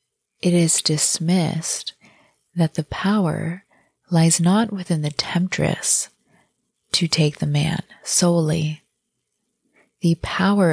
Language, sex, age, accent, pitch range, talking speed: English, female, 20-39, American, 160-185 Hz, 100 wpm